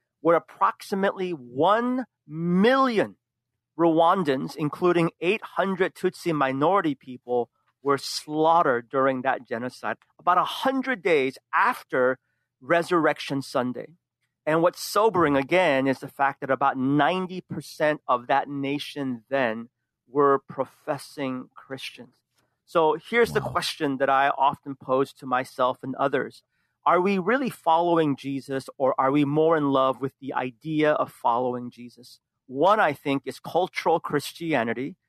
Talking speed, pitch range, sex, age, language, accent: 125 wpm, 130-170 Hz, male, 40-59, English, American